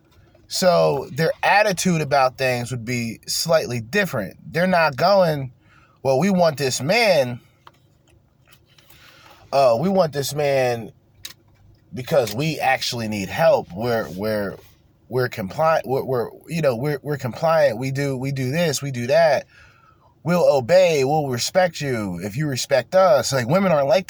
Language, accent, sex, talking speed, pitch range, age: English, American, male, 145 wpm, 115-170 Hz, 20-39